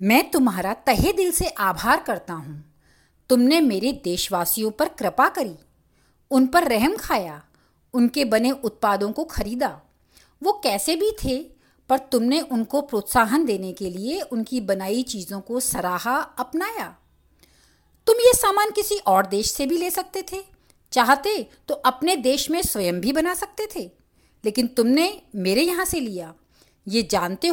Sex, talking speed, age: female, 150 wpm, 50-69